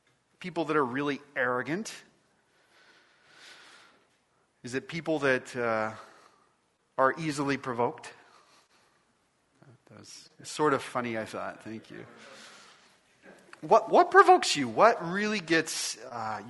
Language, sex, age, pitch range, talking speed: English, male, 30-49, 115-170 Hz, 110 wpm